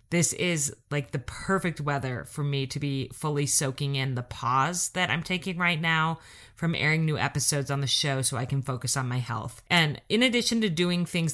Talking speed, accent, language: 210 wpm, American, English